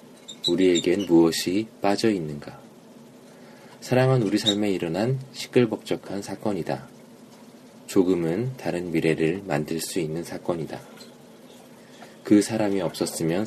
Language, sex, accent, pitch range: Korean, male, native, 80-105 Hz